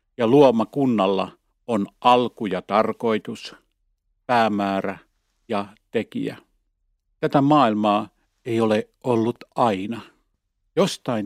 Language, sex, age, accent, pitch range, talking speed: Finnish, male, 50-69, native, 105-130 Hz, 85 wpm